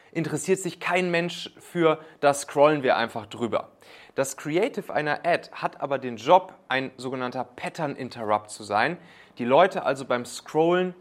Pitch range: 135-180 Hz